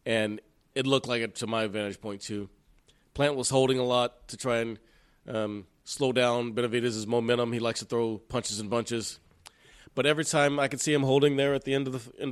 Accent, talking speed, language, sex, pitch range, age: American, 220 wpm, English, male, 110-130 Hz, 30-49